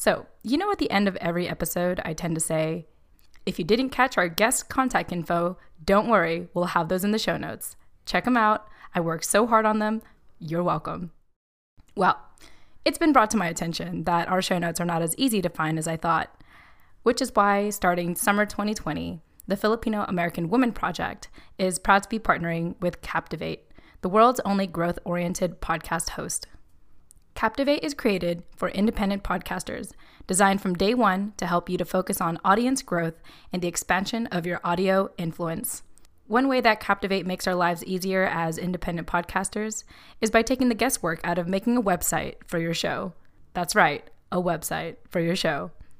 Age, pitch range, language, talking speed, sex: 20-39, 170-215 Hz, English, 185 wpm, female